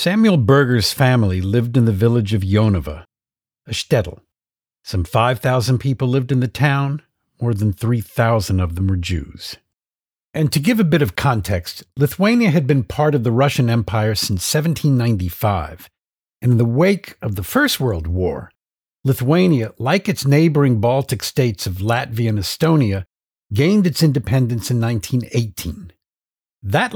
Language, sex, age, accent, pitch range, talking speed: English, male, 50-69, American, 105-150 Hz, 150 wpm